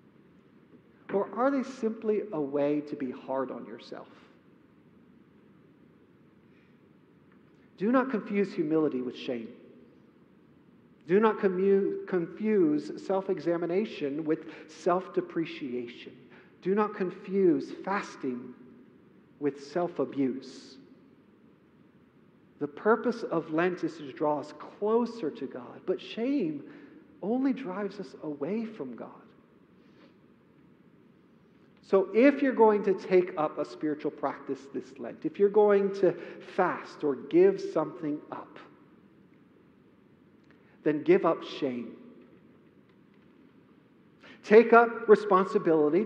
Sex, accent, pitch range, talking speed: male, American, 155-215 Hz, 100 wpm